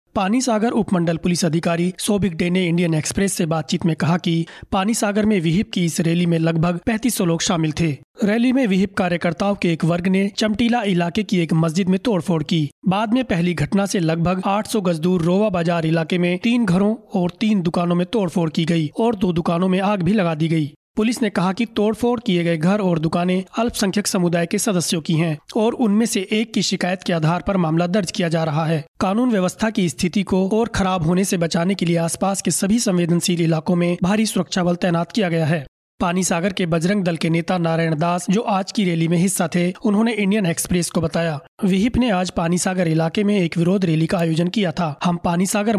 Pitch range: 170-200 Hz